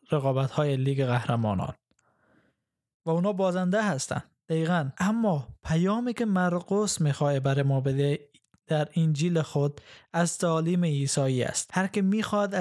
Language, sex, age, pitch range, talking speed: Persian, male, 20-39, 145-170 Hz, 130 wpm